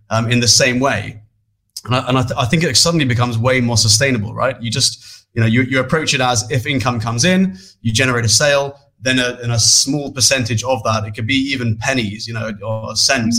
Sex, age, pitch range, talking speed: male, 20-39, 110-130 Hz, 240 wpm